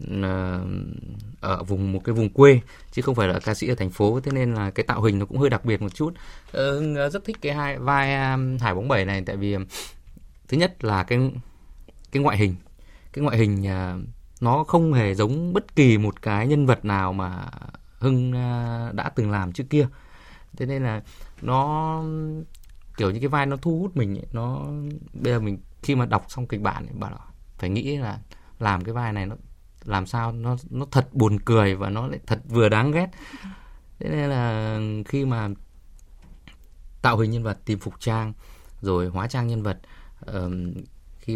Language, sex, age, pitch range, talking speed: Vietnamese, male, 20-39, 100-130 Hz, 190 wpm